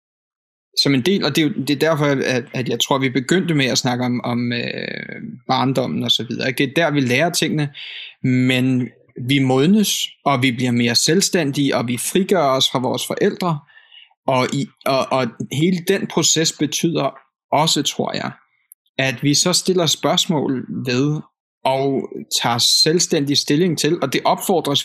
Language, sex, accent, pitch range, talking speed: Danish, male, native, 130-170 Hz, 160 wpm